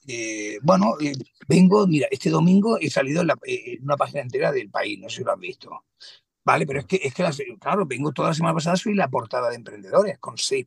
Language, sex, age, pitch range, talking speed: Spanish, male, 60-79, 135-185 Hz, 240 wpm